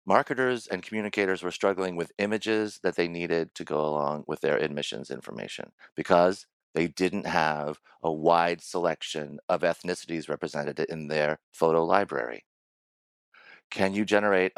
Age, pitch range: 40-59, 80-105 Hz